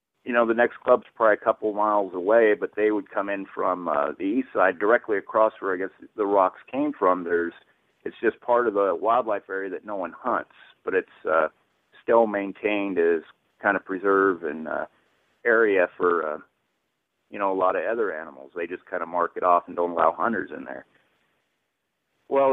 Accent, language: American, English